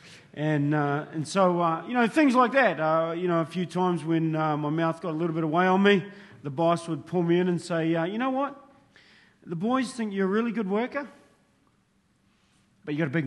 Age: 40-59